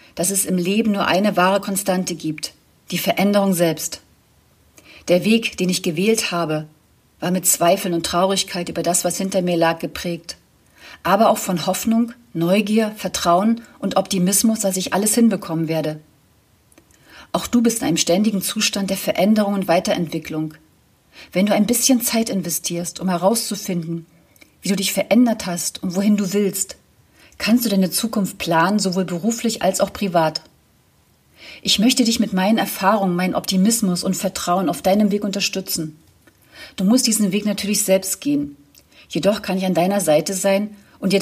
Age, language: 40-59, German